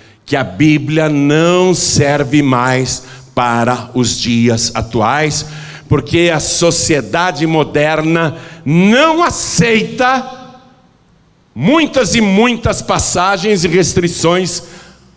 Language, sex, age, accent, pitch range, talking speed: Portuguese, male, 60-79, Brazilian, 125-170 Hz, 85 wpm